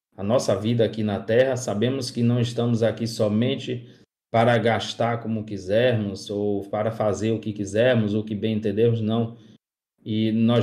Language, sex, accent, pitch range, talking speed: Portuguese, male, Brazilian, 105-120 Hz, 165 wpm